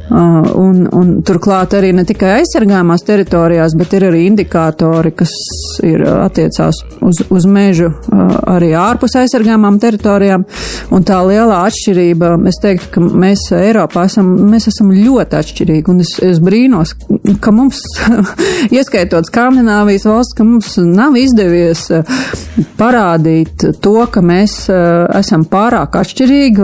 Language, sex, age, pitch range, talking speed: English, female, 30-49, 175-220 Hz, 125 wpm